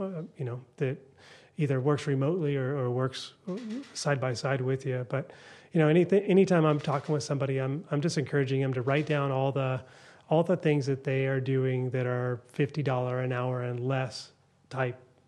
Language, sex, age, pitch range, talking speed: English, male, 30-49, 130-150 Hz, 195 wpm